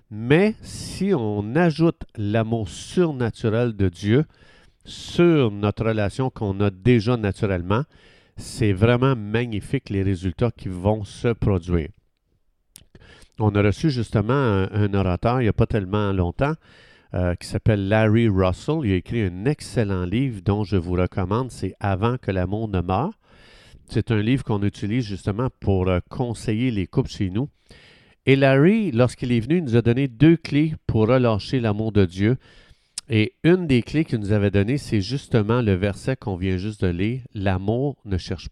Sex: male